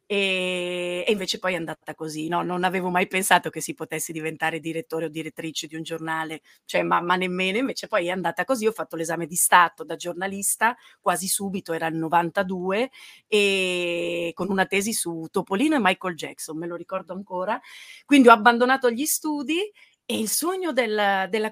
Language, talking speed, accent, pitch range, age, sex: Italian, 180 wpm, native, 175-220 Hz, 40-59, female